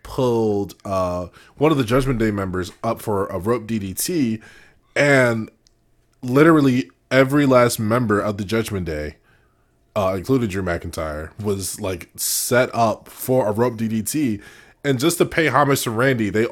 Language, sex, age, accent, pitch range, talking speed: English, male, 20-39, American, 95-130 Hz, 155 wpm